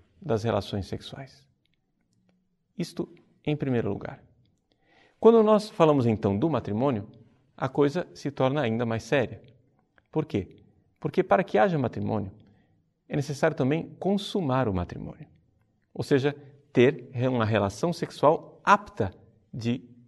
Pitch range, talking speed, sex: 110-150 Hz, 125 wpm, male